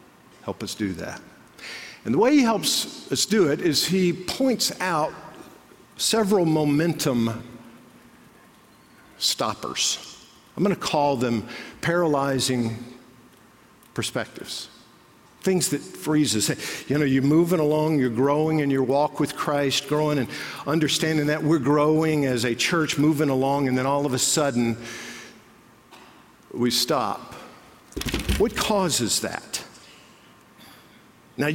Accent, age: American, 50-69